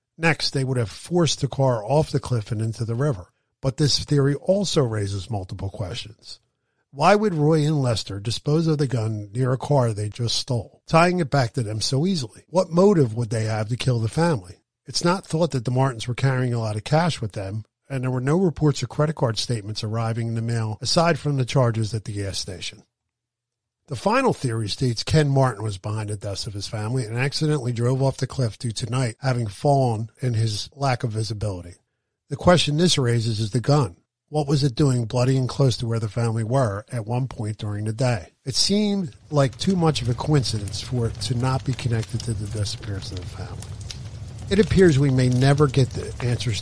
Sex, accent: male, American